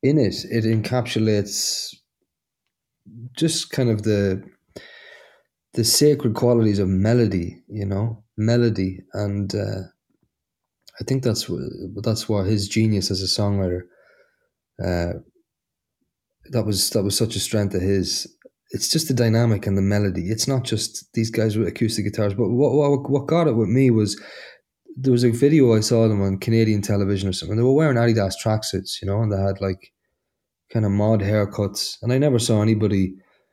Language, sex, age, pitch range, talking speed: English, male, 20-39, 100-120 Hz, 170 wpm